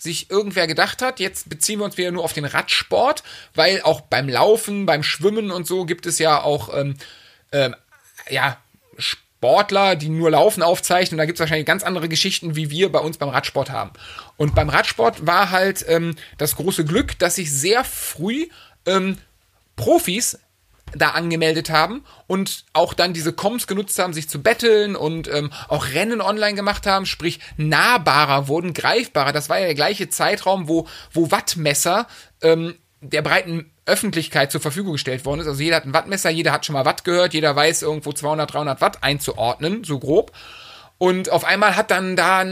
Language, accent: German, German